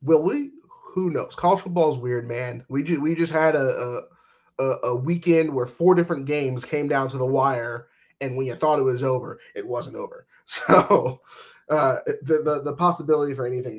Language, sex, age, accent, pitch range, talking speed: English, male, 20-39, American, 125-170 Hz, 195 wpm